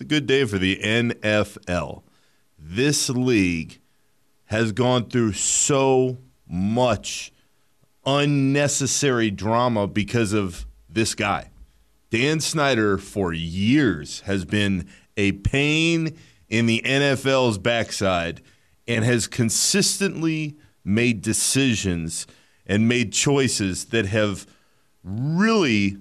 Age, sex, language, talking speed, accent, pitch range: 40-59, male, English, 95 wpm, American, 100-135 Hz